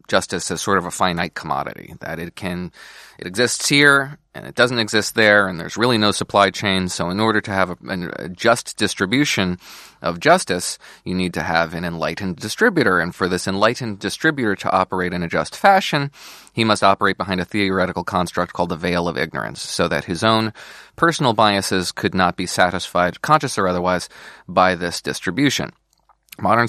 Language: English